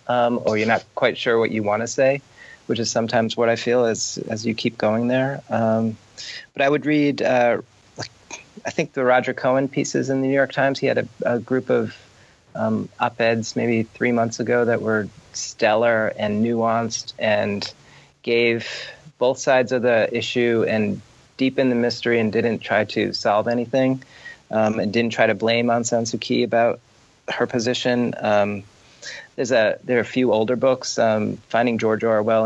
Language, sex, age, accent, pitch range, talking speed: English, male, 30-49, American, 110-120 Hz, 185 wpm